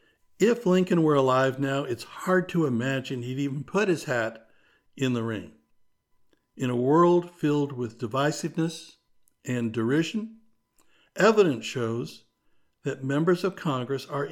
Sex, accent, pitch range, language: male, American, 125-170 Hz, English